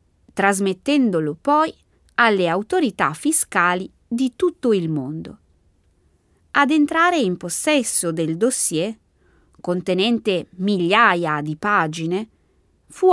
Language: Italian